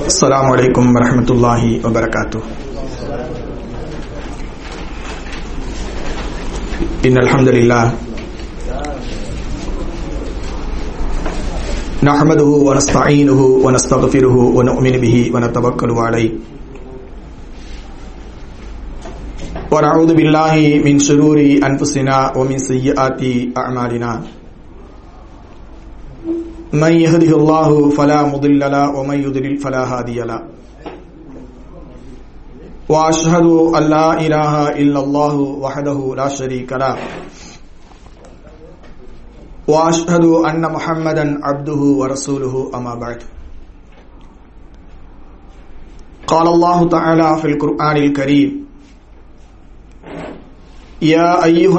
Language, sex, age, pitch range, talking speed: English, male, 50-69, 125-155 Hz, 70 wpm